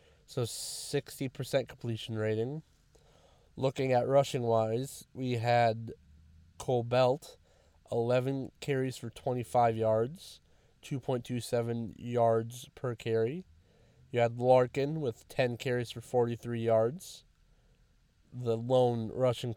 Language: English